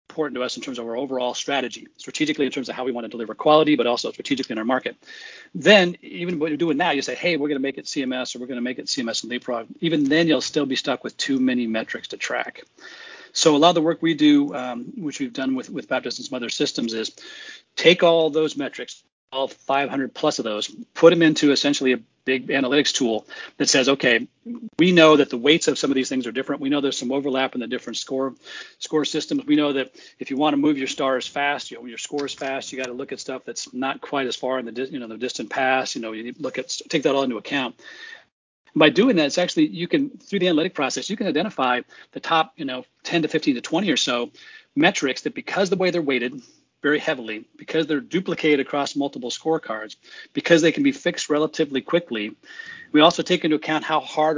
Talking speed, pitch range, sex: 245 wpm, 130-165 Hz, male